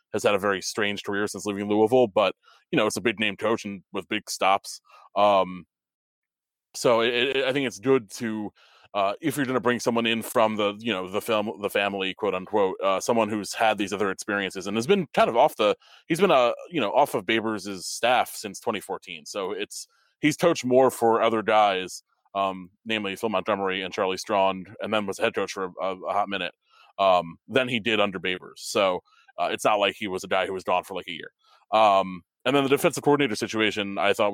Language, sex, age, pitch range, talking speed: English, male, 20-39, 95-115 Hz, 220 wpm